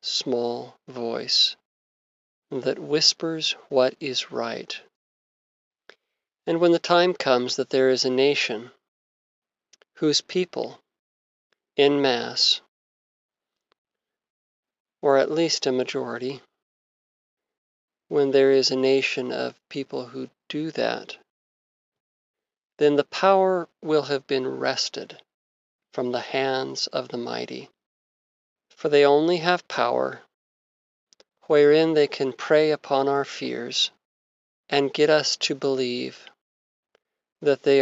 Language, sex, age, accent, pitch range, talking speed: English, male, 40-59, American, 120-150 Hz, 110 wpm